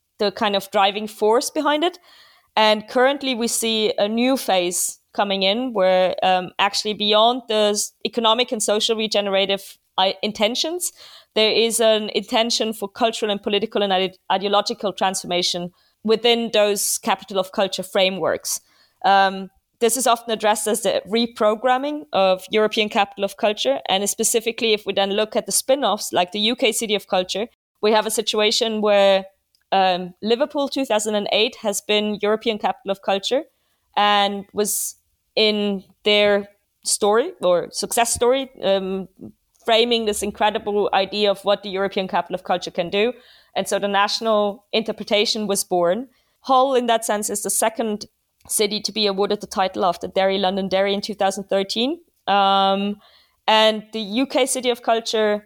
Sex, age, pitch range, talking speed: female, 20-39, 195-230 Hz, 155 wpm